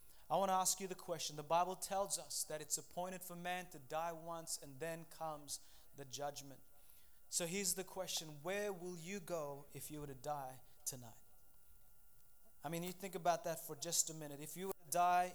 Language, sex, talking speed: English, male, 205 wpm